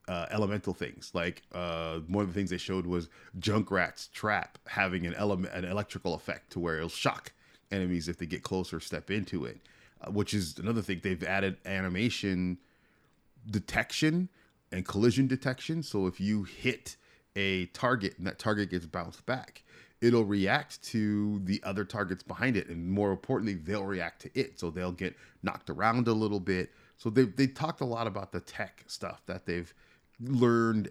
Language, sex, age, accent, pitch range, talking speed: English, male, 30-49, American, 90-105 Hz, 180 wpm